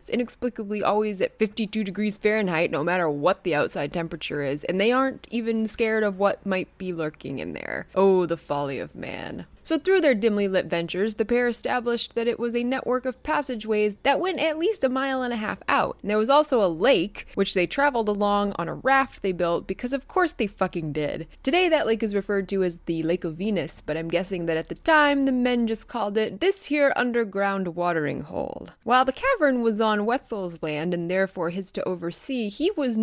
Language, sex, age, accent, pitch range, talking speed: English, female, 20-39, American, 175-255 Hz, 215 wpm